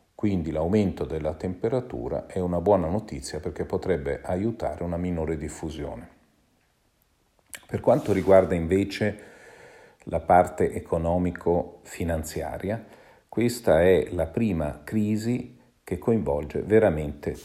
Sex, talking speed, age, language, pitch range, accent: male, 100 wpm, 50-69, Italian, 80-105 Hz, native